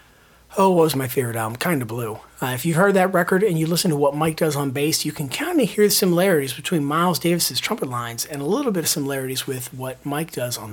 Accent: American